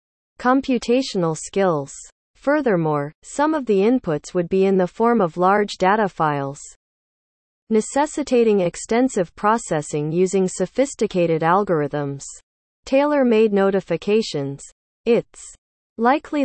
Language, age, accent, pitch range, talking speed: English, 40-59, American, 160-230 Hz, 100 wpm